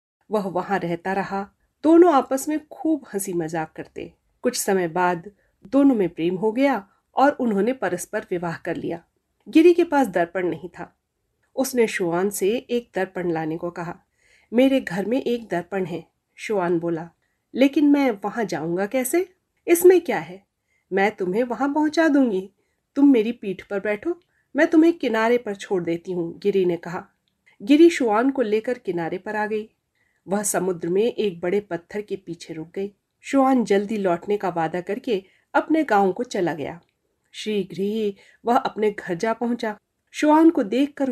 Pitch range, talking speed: 185-255 Hz, 165 wpm